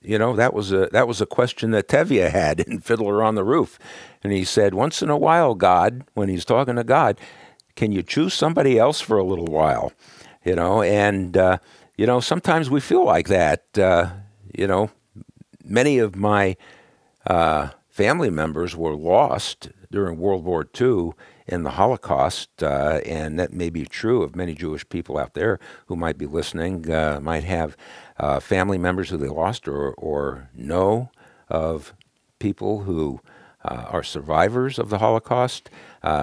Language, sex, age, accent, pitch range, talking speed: English, male, 60-79, American, 80-105 Hz, 175 wpm